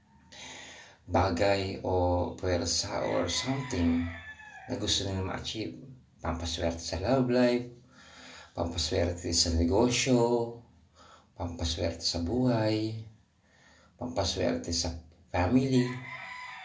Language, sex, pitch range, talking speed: Filipino, male, 85-100 Hz, 75 wpm